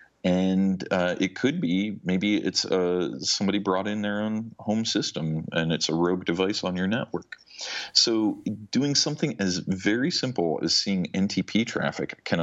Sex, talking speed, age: male, 165 wpm, 40-59